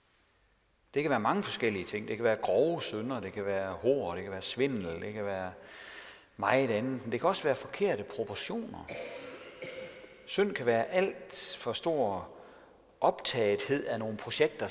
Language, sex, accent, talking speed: Danish, male, native, 165 wpm